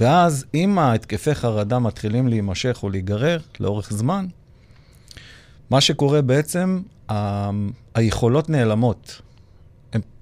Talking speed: 100 wpm